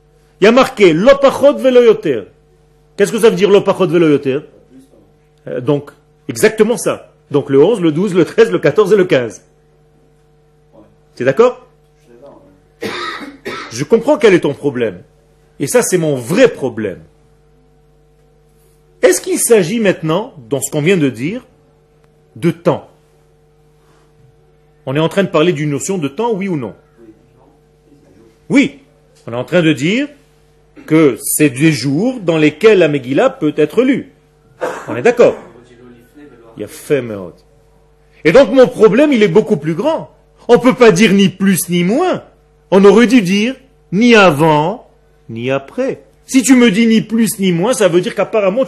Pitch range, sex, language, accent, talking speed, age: 150-215 Hz, male, French, French, 160 wpm, 40-59